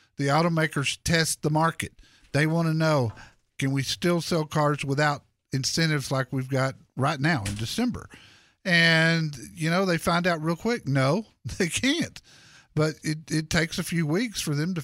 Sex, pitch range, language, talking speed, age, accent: male, 130-175 Hz, English, 180 wpm, 50-69, American